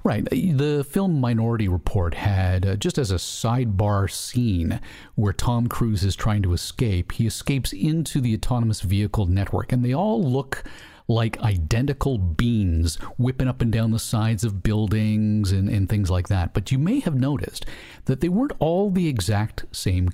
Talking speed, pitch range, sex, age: 175 wpm, 100-135 Hz, male, 50-69